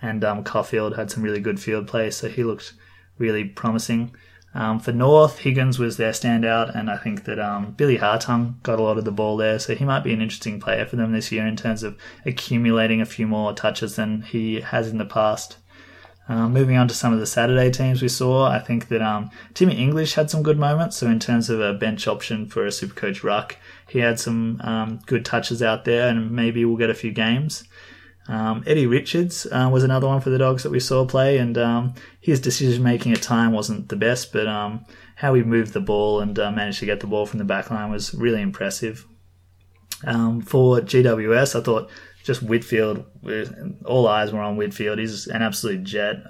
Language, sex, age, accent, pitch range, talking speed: English, male, 20-39, Australian, 105-120 Hz, 220 wpm